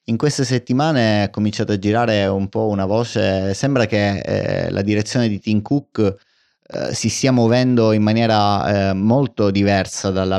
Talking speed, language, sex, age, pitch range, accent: 170 wpm, Italian, male, 30-49, 95-115 Hz, native